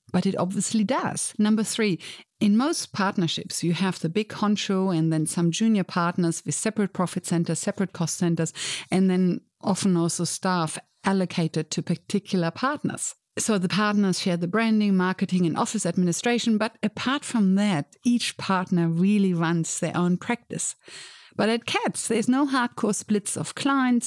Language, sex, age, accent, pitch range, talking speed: English, female, 60-79, German, 175-220 Hz, 160 wpm